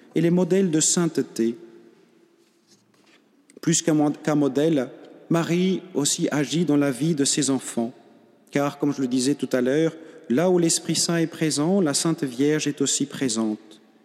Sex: male